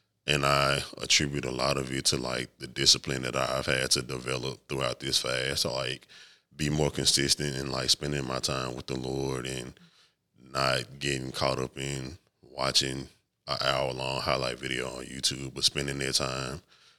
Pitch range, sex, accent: 65-75 Hz, male, American